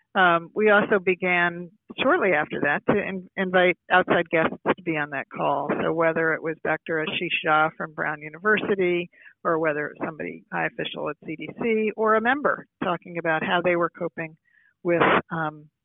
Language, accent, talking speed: English, American, 180 wpm